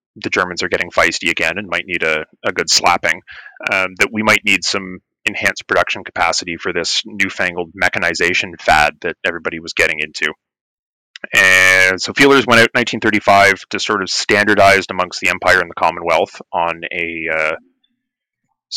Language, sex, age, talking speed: English, male, 30-49, 165 wpm